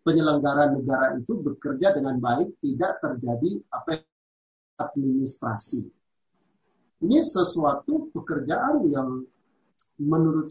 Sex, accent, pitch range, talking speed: male, native, 140-195 Hz, 85 wpm